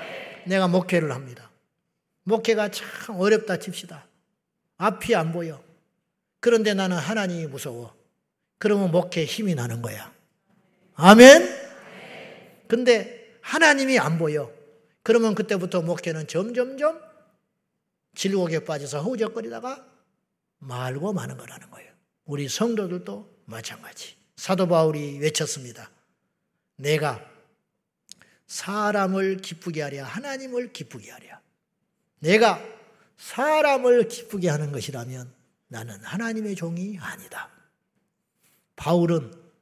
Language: Korean